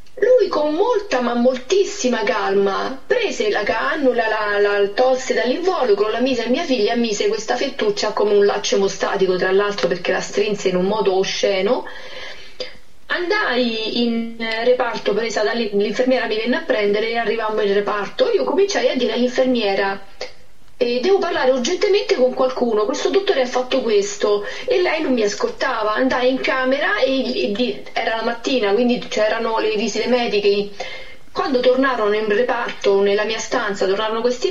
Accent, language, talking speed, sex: native, Italian, 160 wpm, female